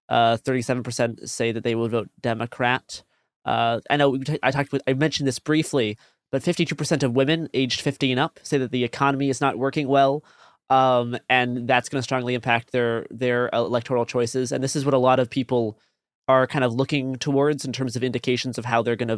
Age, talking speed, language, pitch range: 20-39, 215 wpm, English, 120-140 Hz